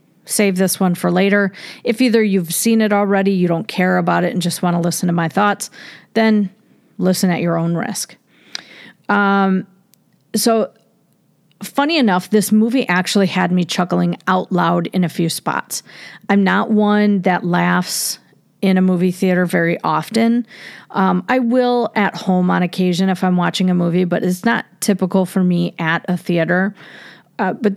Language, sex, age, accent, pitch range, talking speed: English, female, 40-59, American, 180-210 Hz, 175 wpm